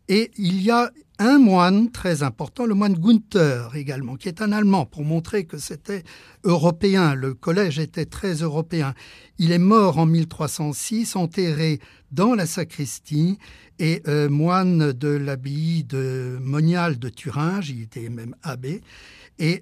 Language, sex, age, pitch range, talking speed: French, male, 50-69, 140-180 Hz, 150 wpm